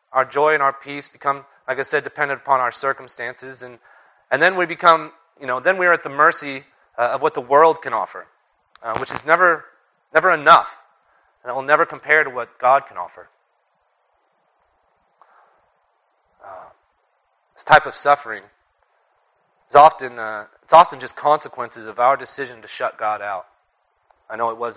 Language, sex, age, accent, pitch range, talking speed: English, male, 30-49, American, 125-155 Hz, 175 wpm